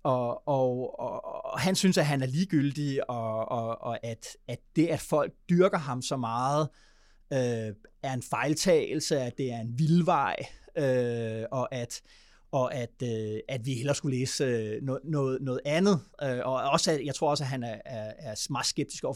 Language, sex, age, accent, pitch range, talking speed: Danish, male, 30-49, native, 125-160 Hz, 185 wpm